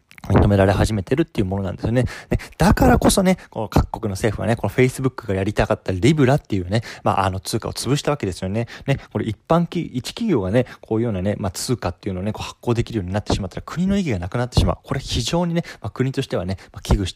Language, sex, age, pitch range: Japanese, male, 20-39, 100-150 Hz